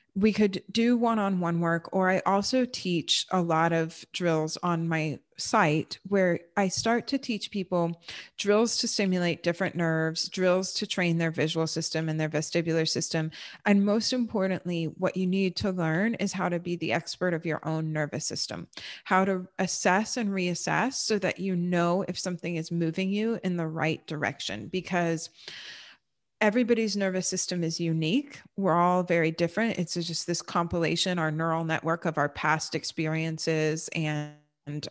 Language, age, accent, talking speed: English, 30-49, American, 165 wpm